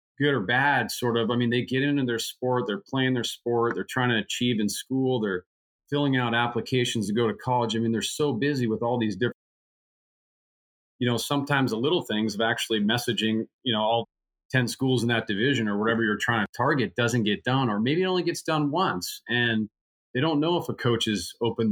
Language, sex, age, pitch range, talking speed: English, male, 40-59, 100-125 Hz, 225 wpm